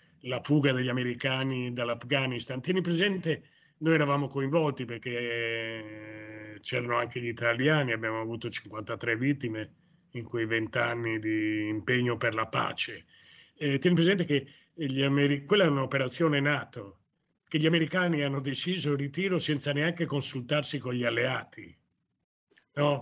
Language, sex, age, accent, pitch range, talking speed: Italian, male, 30-49, native, 120-155 Hz, 135 wpm